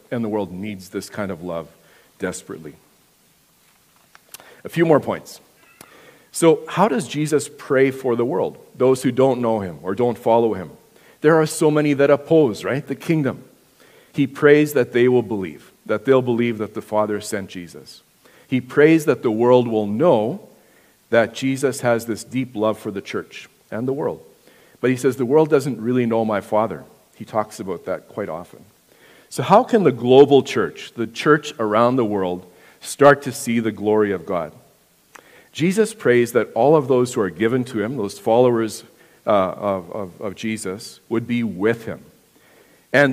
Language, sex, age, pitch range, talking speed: English, male, 50-69, 110-140 Hz, 180 wpm